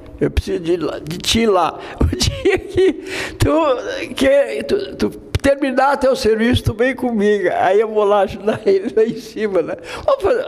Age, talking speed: 60-79, 170 wpm